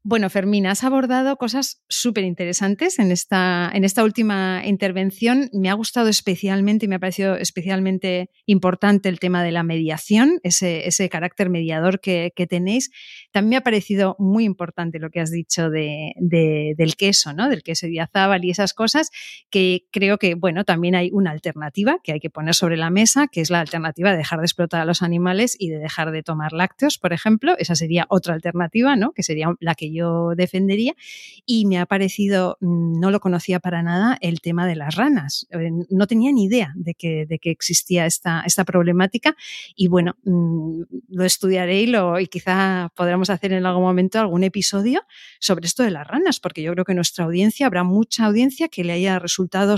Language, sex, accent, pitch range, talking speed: Spanish, female, Spanish, 175-220 Hz, 195 wpm